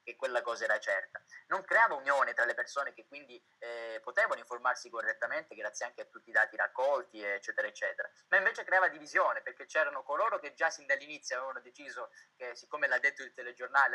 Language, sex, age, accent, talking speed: Italian, male, 20-39, native, 195 wpm